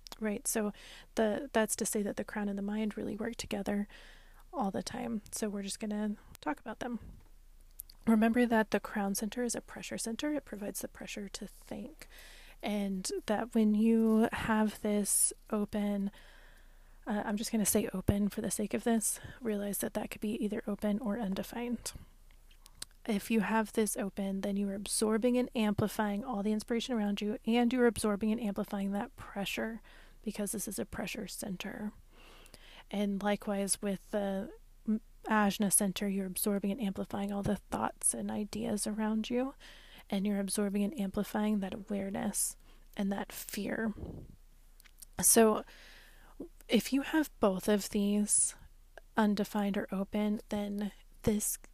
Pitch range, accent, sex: 205-225 Hz, American, female